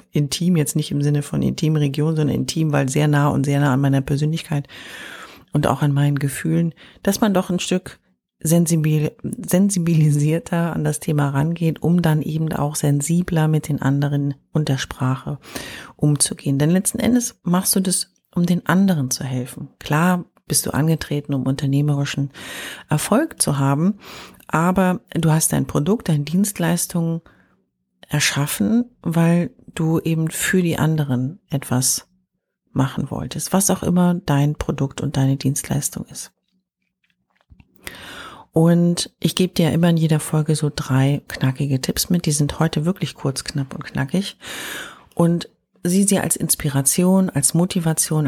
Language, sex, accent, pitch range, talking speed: German, female, German, 145-180 Hz, 150 wpm